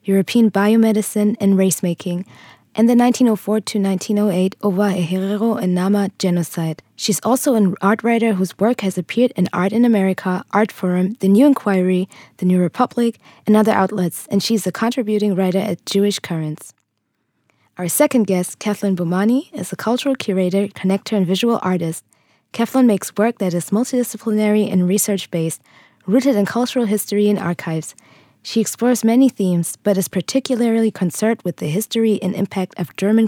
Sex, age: female, 20-39